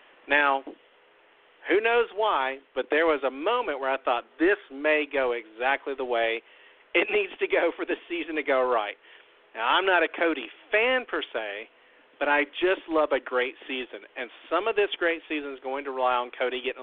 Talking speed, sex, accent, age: 200 wpm, male, American, 50-69